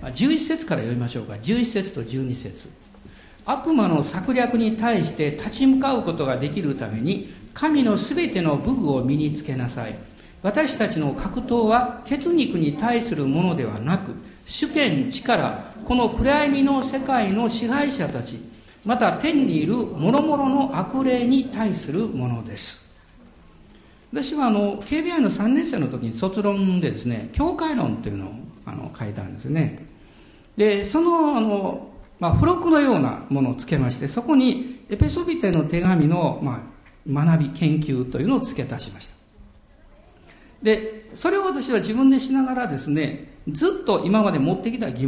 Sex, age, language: male, 50-69, Japanese